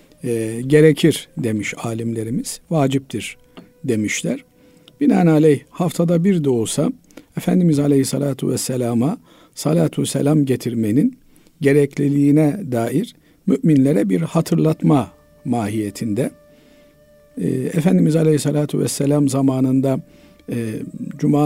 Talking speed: 85 wpm